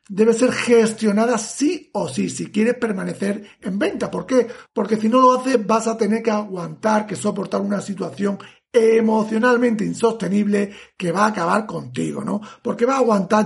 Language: Spanish